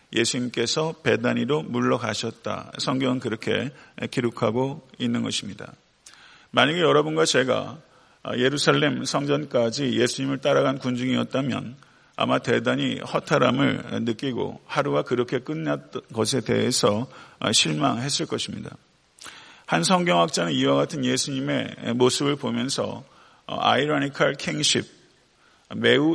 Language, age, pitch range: Korean, 40-59, 120-145 Hz